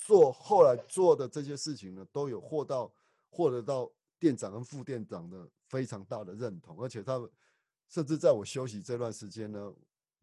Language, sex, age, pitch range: Chinese, male, 30-49, 100-145 Hz